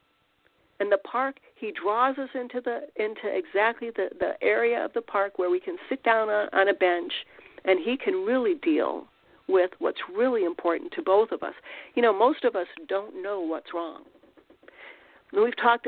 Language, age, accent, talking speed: English, 50-69, American, 185 wpm